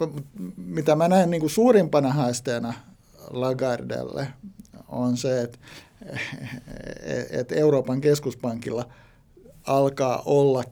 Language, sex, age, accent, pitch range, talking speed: Finnish, male, 60-79, native, 120-145 Hz, 85 wpm